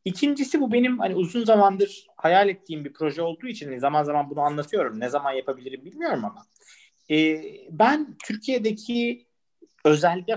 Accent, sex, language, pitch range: native, male, Turkish, 125-200 Hz